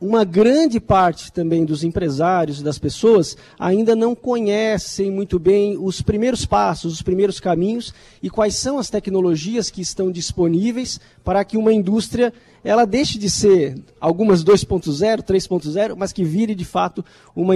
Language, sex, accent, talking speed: Portuguese, male, Brazilian, 155 wpm